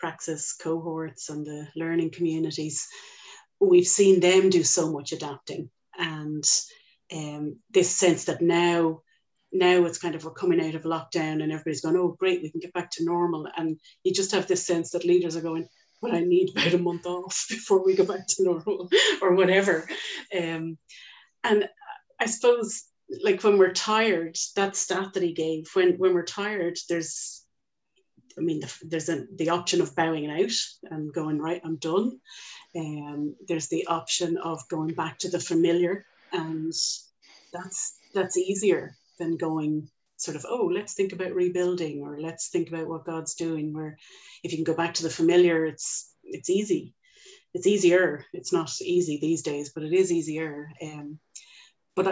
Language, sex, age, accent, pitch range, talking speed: English, female, 30-49, Irish, 160-190 Hz, 175 wpm